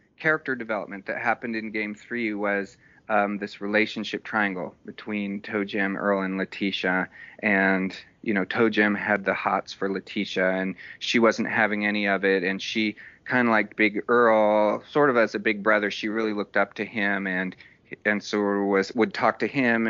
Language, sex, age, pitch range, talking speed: English, male, 30-49, 100-115 Hz, 185 wpm